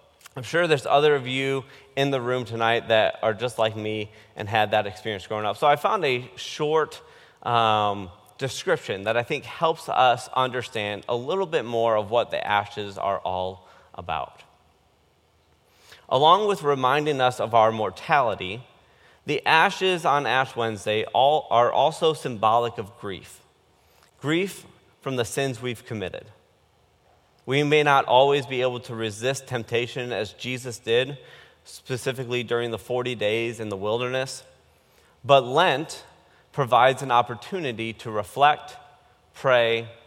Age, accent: 30-49, American